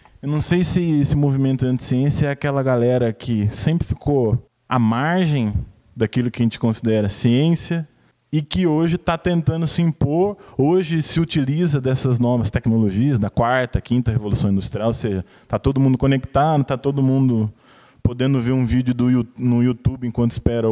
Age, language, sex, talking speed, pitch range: 20-39, Portuguese, male, 165 wpm, 115-165 Hz